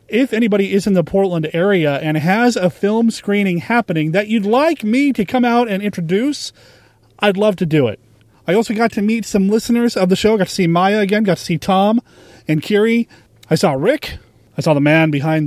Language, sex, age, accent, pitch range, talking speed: English, male, 30-49, American, 145-205 Hz, 220 wpm